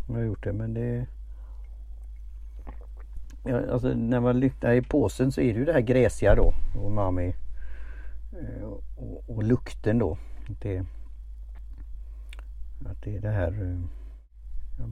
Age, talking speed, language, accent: 60-79, 130 wpm, Swedish, Norwegian